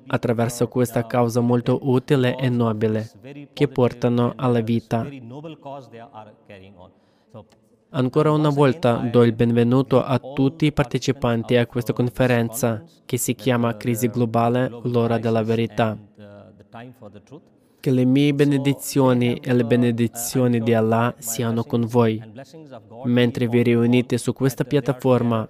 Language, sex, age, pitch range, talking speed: Italian, male, 20-39, 115-130 Hz, 120 wpm